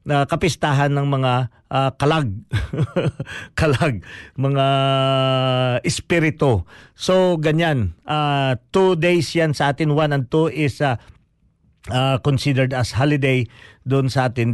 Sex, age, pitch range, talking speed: male, 50-69, 120-160 Hz, 120 wpm